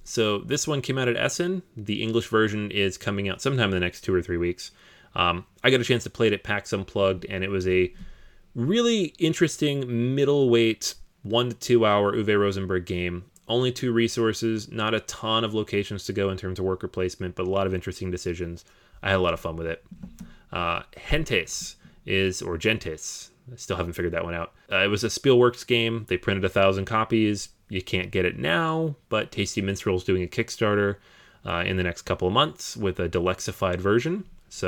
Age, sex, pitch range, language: 30-49, male, 95-125 Hz, English